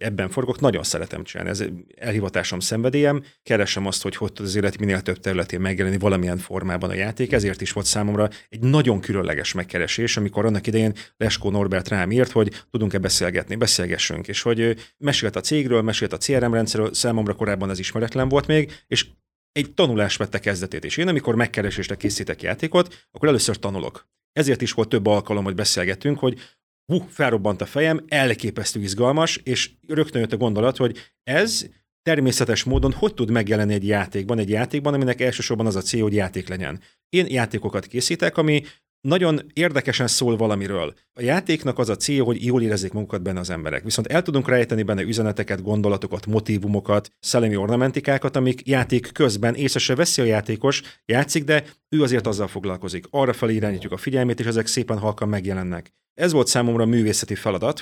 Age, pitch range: 30-49, 100-130 Hz